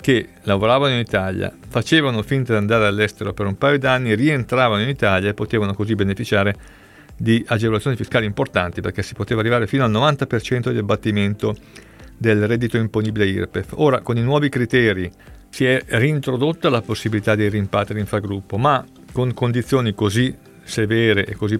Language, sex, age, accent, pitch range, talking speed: Italian, male, 50-69, native, 100-130 Hz, 160 wpm